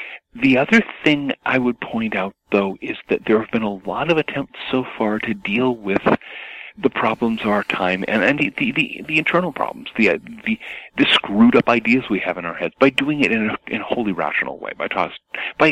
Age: 40-59